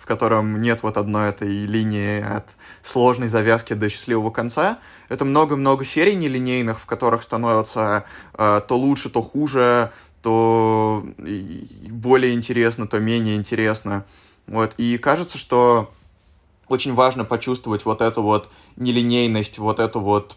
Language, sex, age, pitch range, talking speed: Russian, male, 20-39, 105-125 Hz, 130 wpm